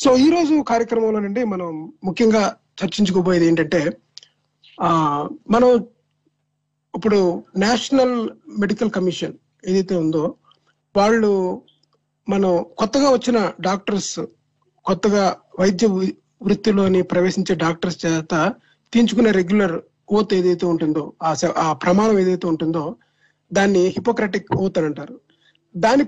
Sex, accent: male, native